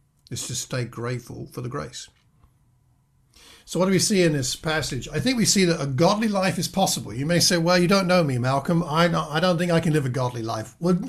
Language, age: English, 50-69